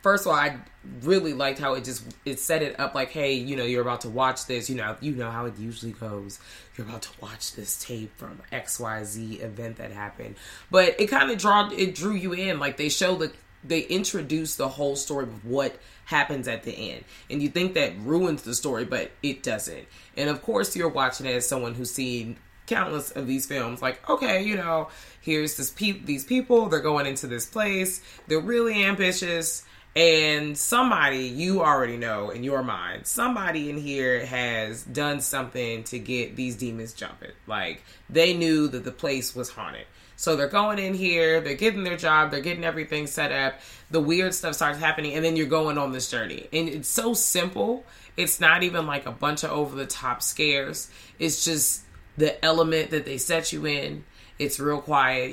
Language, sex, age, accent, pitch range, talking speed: English, female, 20-39, American, 125-165 Hz, 200 wpm